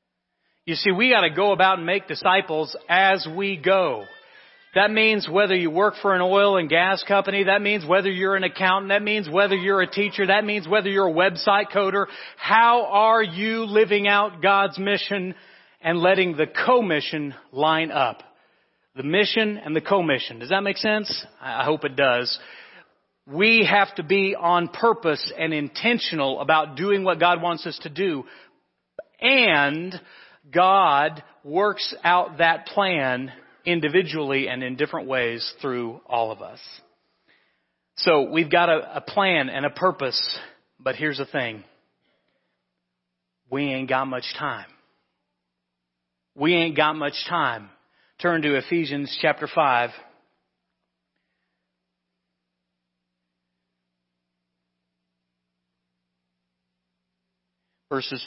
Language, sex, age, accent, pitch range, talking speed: English, male, 40-59, American, 125-195 Hz, 135 wpm